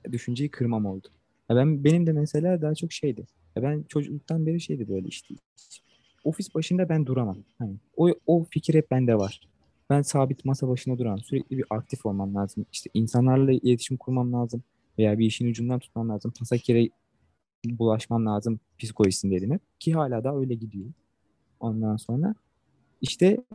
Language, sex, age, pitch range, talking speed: Turkish, male, 20-39, 110-140 Hz, 160 wpm